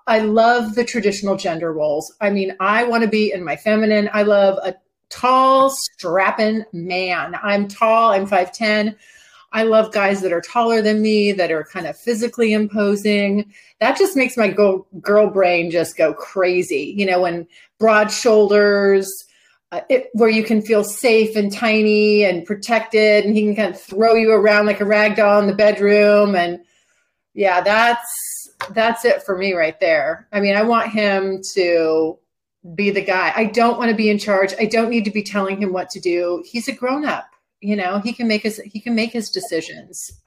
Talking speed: 190 wpm